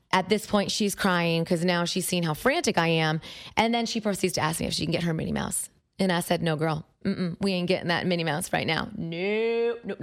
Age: 30-49